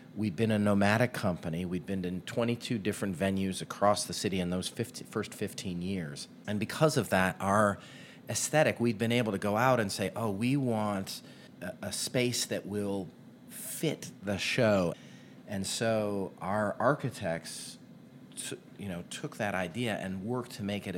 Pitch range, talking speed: 90-115 Hz, 170 wpm